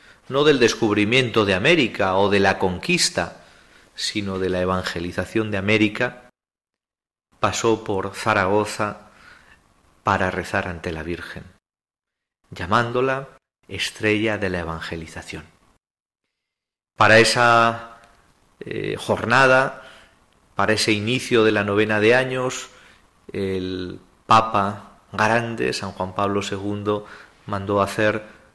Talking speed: 105 wpm